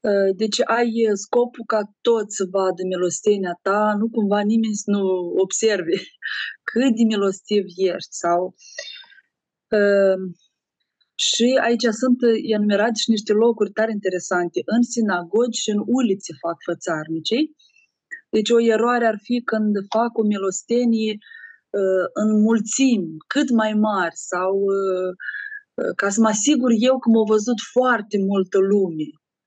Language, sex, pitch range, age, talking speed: Romanian, female, 195-240 Hz, 20-39, 125 wpm